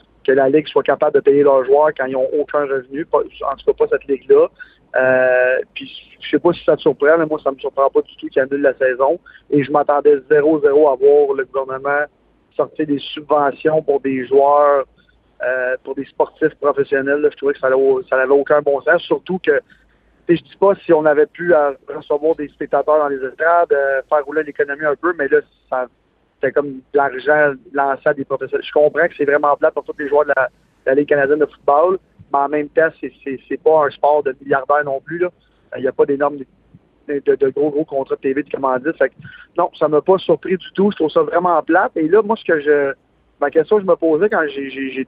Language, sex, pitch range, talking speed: French, male, 135-165 Hz, 235 wpm